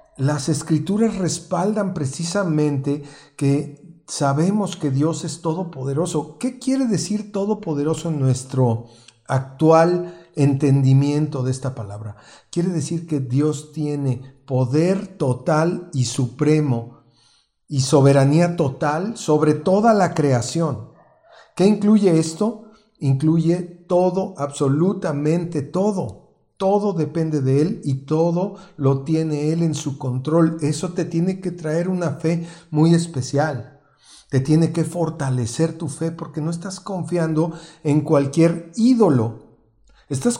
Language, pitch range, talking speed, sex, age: Spanish, 135-170 Hz, 115 wpm, male, 50-69